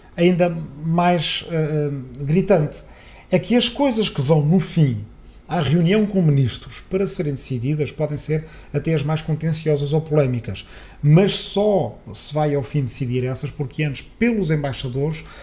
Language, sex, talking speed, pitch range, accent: Portuguese, male, 150 wpm, 130-170 Hz, Portuguese